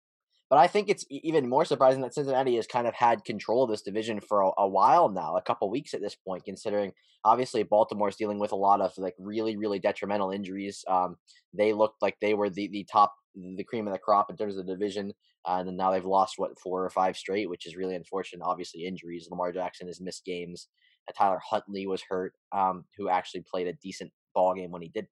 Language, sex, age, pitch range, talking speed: English, male, 10-29, 95-110 Hz, 240 wpm